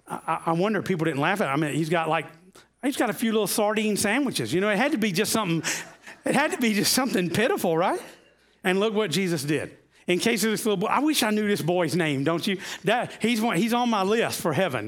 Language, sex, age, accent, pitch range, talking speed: English, male, 40-59, American, 160-235 Hz, 260 wpm